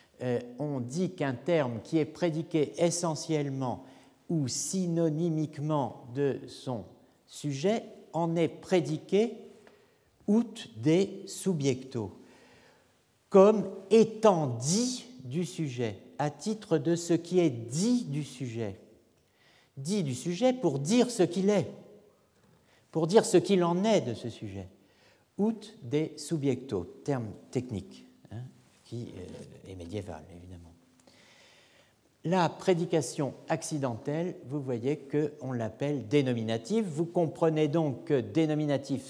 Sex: male